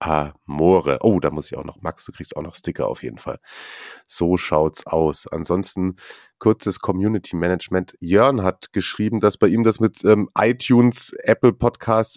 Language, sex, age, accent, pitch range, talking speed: German, male, 30-49, German, 95-110 Hz, 170 wpm